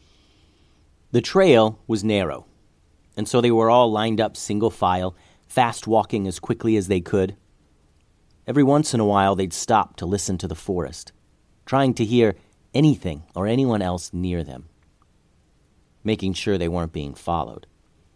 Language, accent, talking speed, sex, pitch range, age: English, American, 155 wpm, male, 80-115 Hz, 40-59